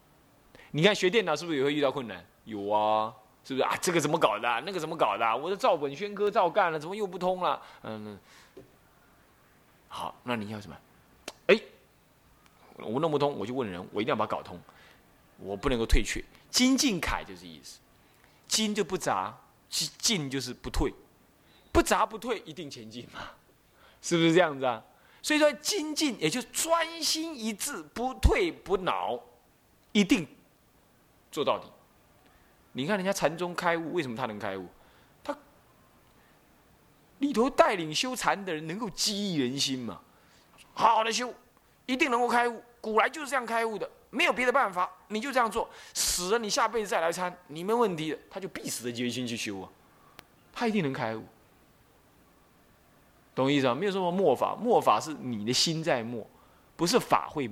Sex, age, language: male, 20-39, Chinese